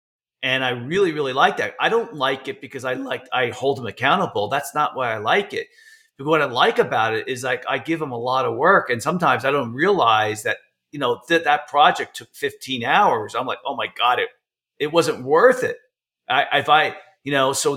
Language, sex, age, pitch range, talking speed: English, male, 40-59, 115-155 Hz, 230 wpm